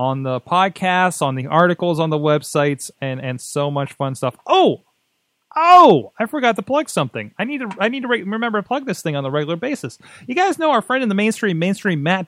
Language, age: English, 30-49